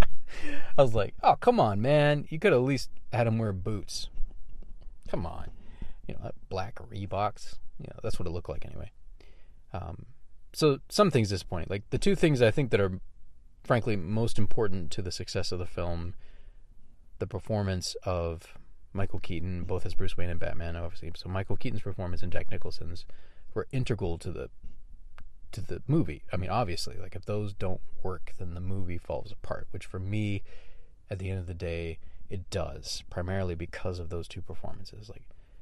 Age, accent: 30-49, American